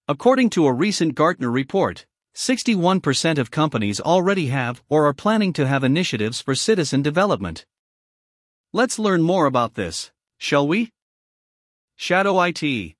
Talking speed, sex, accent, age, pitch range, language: 135 wpm, male, American, 50-69, 135-195 Hz, English